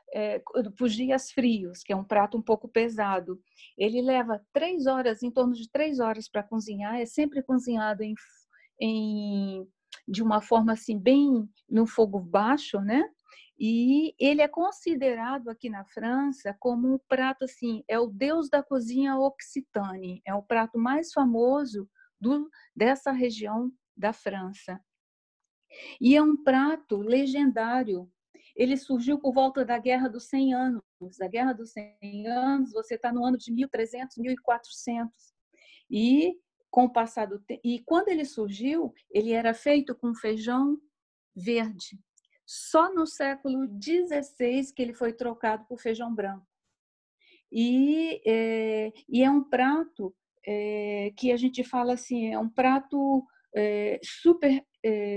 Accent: Brazilian